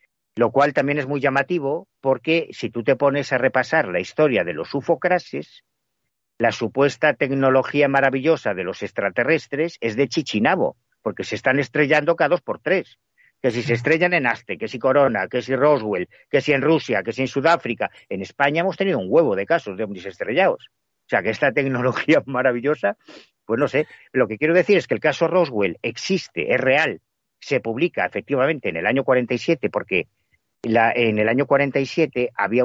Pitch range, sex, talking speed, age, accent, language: 120-160 Hz, male, 185 wpm, 50-69, Spanish, Spanish